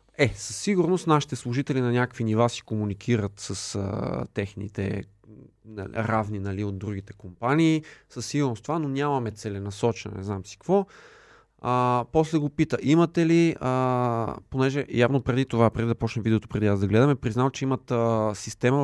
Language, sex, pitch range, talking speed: Bulgarian, male, 110-135 Hz, 170 wpm